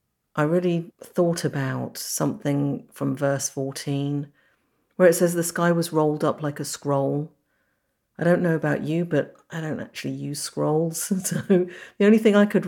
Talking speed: 170 wpm